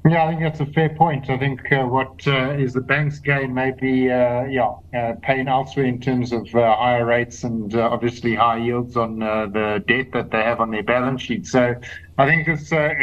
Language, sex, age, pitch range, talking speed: English, male, 50-69, 120-140 Hz, 230 wpm